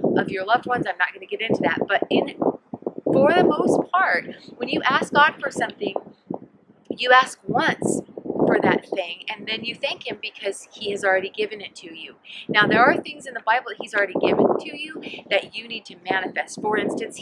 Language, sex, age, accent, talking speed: English, female, 30-49, American, 215 wpm